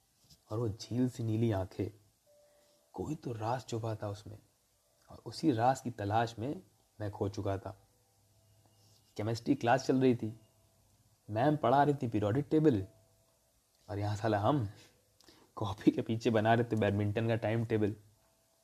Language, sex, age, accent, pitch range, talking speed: Hindi, male, 30-49, native, 105-125 Hz, 150 wpm